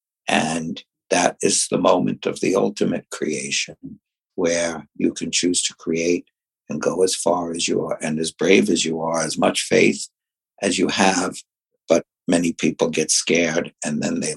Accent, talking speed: American, 175 wpm